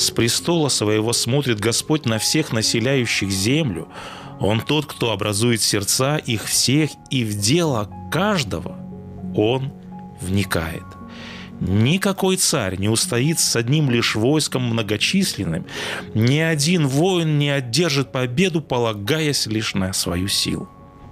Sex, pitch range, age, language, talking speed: male, 105-150 Hz, 30-49, Russian, 120 wpm